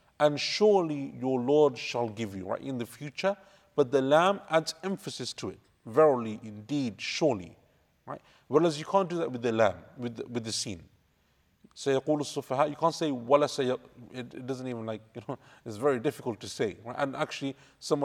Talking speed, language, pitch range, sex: 165 wpm, English, 120-150 Hz, male